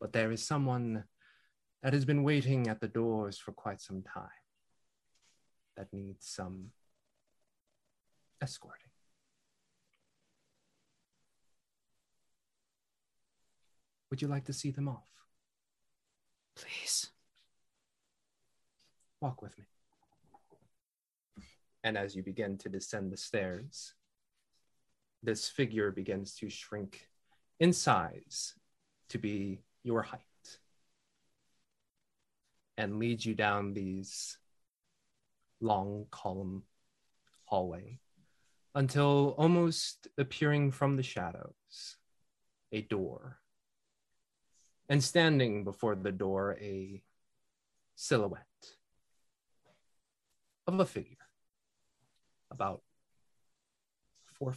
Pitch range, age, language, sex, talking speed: 100-135 Hz, 30-49, English, male, 85 wpm